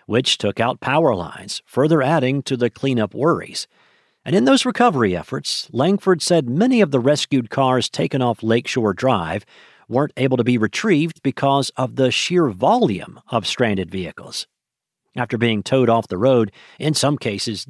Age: 50-69